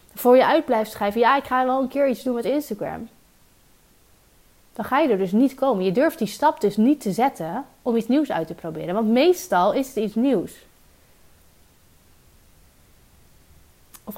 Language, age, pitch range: Dutch, 30-49, 205-265 Hz